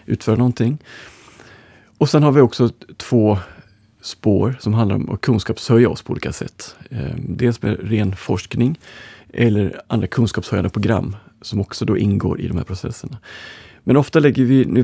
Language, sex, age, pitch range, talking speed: Swedish, male, 30-49, 105-125 Hz, 160 wpm